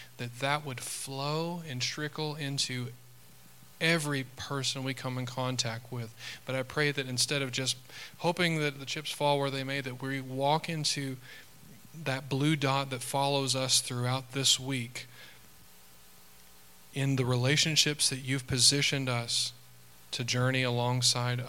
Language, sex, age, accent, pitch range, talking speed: English, male, 40-59, American, 105-135 Hz, 145 wpm